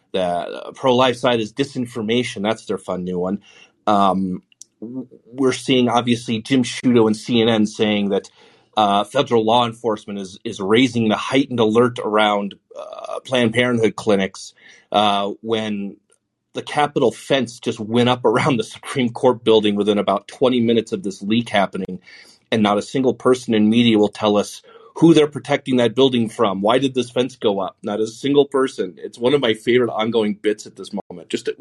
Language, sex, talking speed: English, male, 180 wpm